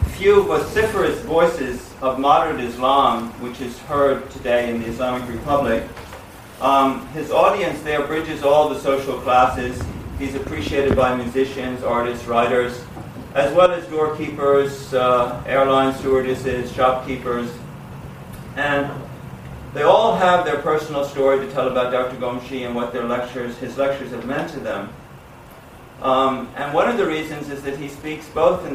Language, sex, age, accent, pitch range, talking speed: English, male, 50-69, American, 120-140 Hz, 145 wpm